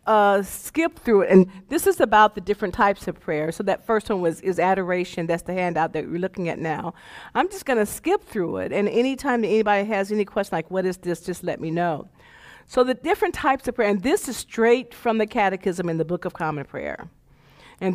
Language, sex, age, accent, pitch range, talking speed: English, female, 50-69, American, 170-220 Hz, 230 wpm